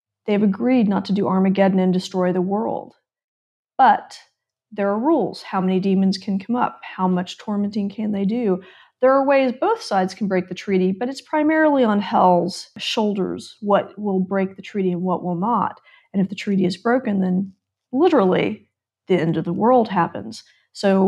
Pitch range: 185-220 Hz